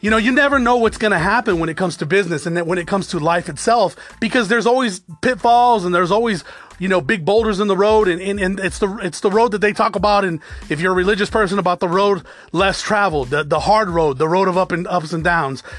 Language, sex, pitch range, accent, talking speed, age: English, male, 175-230 Hz, American, 270 wpm, 30-49